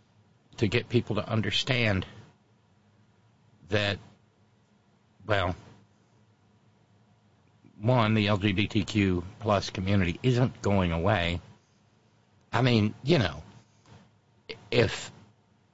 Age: 60-79